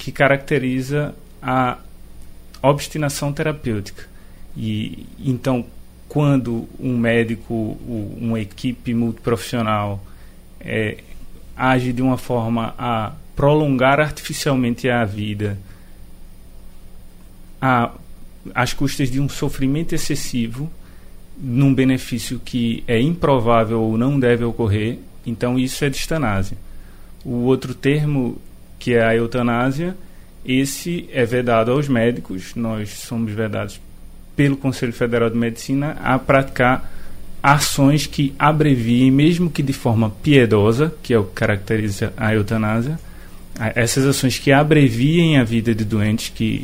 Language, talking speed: Portuguese, 110 wpm